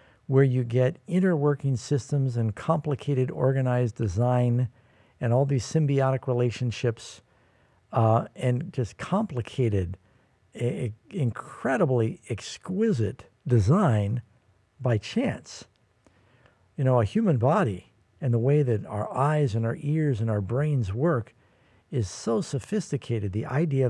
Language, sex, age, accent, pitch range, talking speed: English, male, 60-79, American, 110-140 Hz, 120 wpm